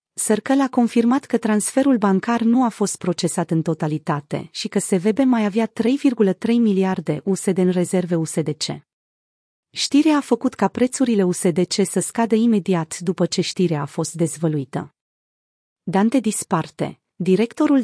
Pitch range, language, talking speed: 175-230 Hz, Romanian, 140 wpm